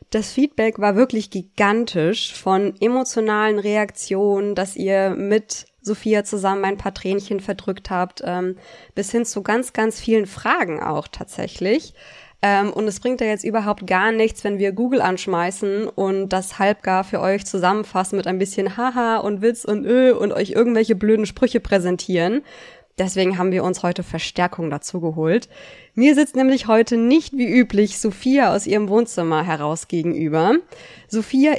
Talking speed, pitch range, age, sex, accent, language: 155 wpm, 195-235 Hz, 20-39, female, German, German